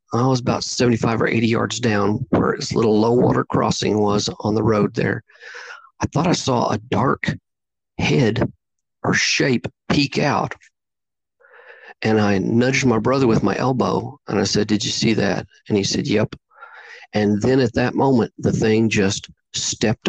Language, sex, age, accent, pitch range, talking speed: English, male, 40-59, American, 105-125 Hz, 175 wpm